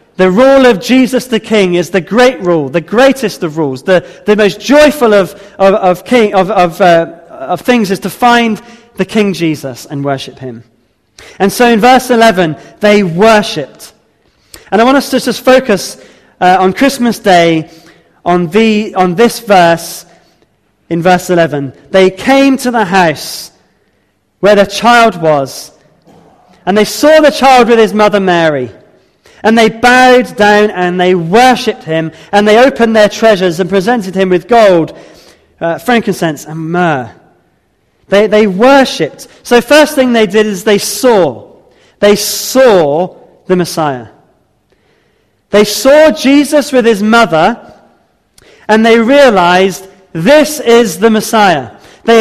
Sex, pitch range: male, 175-235 Hz